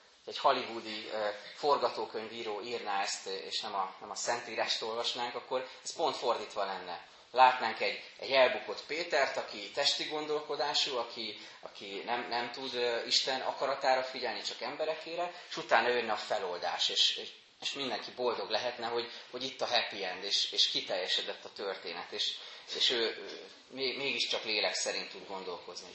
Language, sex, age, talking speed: Hungarian, male, 30-49, 155 wpm